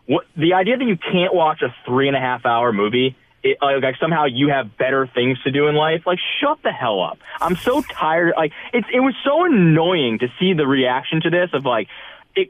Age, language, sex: 20-39, English, male